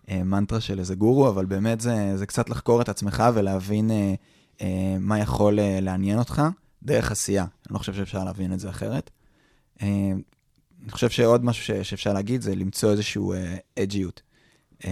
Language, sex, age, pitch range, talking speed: Hebrew, male, 20-39, 95-115 Hz, 175 wpm